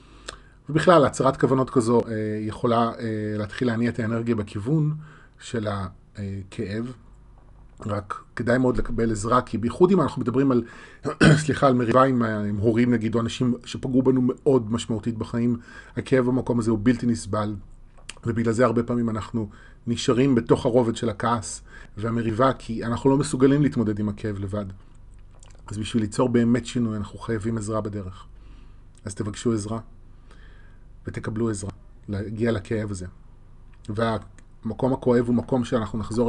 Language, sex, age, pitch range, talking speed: Hebrew, male, 30-49, 105-125 Hz, 145 wpm